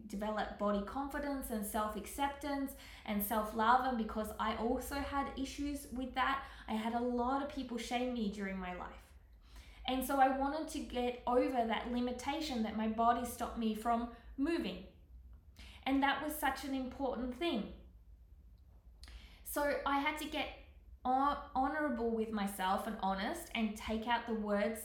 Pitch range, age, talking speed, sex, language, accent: 205-270 Hz, 20-39, 155 wpm, female, English, Australian